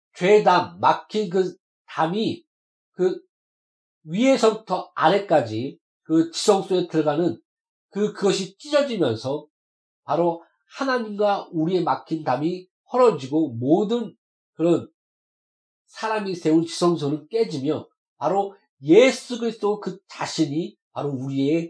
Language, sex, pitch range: Korean, male, 145-210 Hz